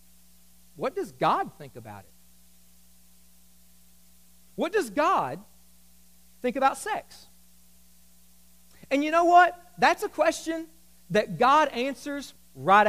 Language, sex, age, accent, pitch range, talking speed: English, male, 40-59, American, 195-280 Hz, 105 wpm